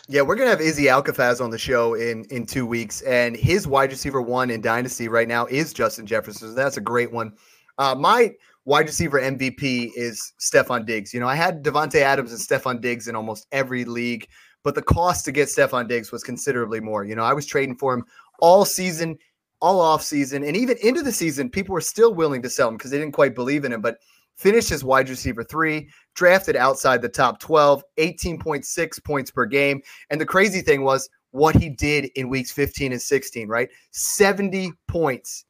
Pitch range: 120-155 Hz